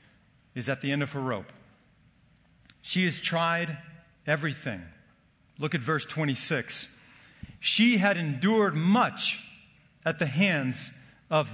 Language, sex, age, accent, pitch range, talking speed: English, male, 40-59, American, 130-175 Hz, 120 wpm